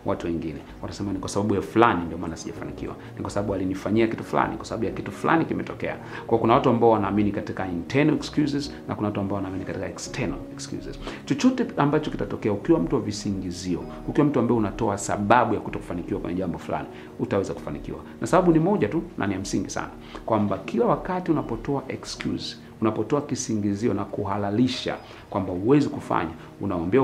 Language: Swahili